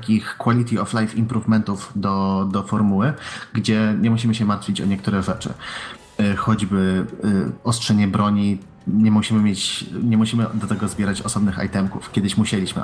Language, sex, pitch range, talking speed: Polish, male, 100-110 Hz, 130 wpm